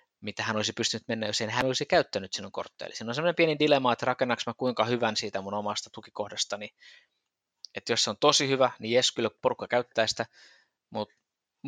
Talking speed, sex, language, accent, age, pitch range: 195 wpm, male, Finnish, native, 20-39, 105-125 Hz